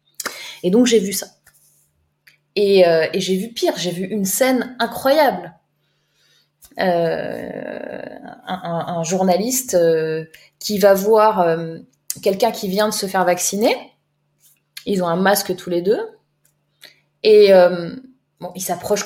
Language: French